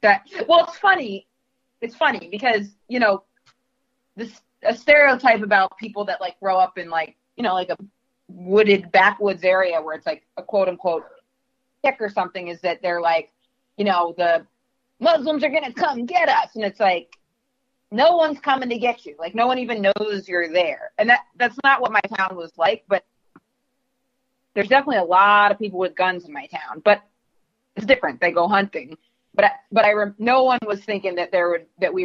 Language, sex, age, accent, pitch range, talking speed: English, female, 30-49, American, 185-255 Hz, 195 wpm